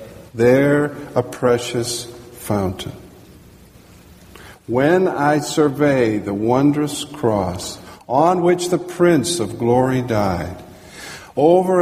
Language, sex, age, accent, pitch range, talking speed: English, male, 50-69, American, 105-155 Hz, 90 wpm